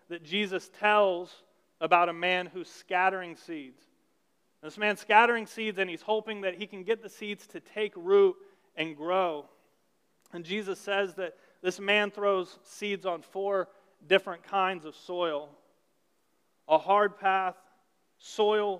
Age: 30-49